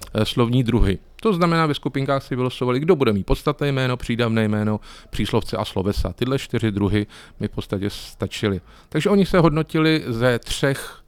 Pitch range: 105-135 Hz